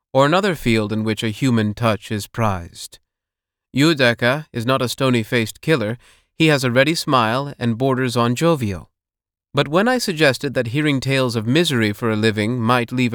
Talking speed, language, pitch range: 180 wpm, English, 110-140 Hz